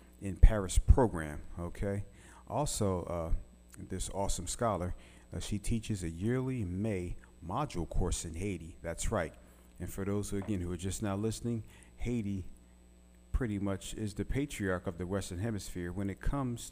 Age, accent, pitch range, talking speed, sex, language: 40-59, American, 80-100 Hz, 160 wpm, male, English